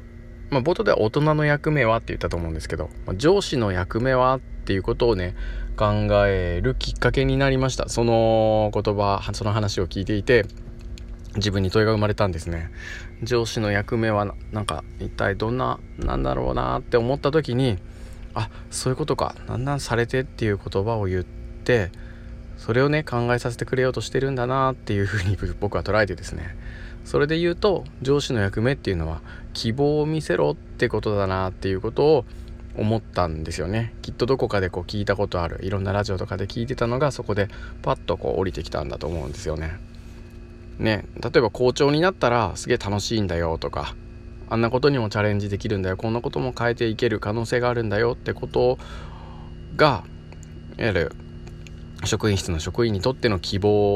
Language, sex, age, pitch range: Japanese, male, 20-39, 90-120 Hz